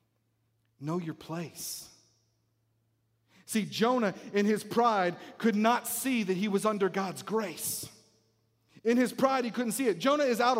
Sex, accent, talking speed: male, American, 155 wpm